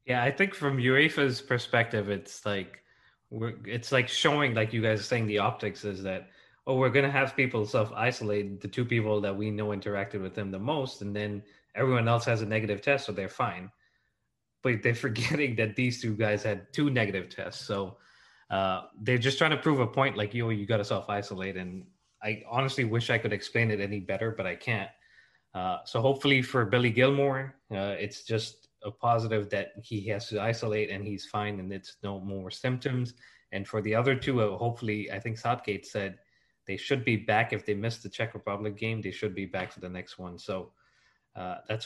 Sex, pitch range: male, 105-125 Hz